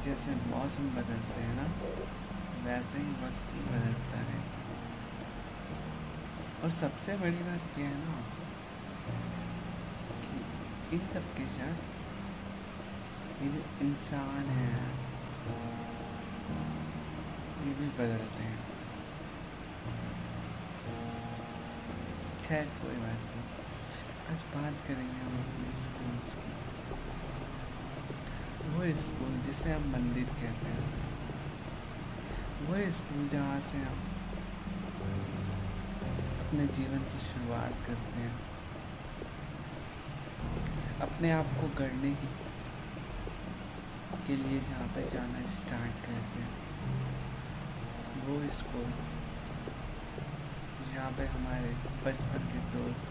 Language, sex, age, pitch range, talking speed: Hindi, male, 60-79, 95-145 Hz, 90 wpm